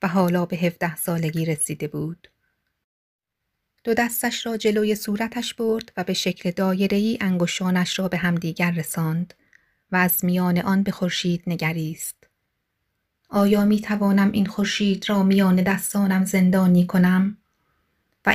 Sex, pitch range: female, 185-210 Hz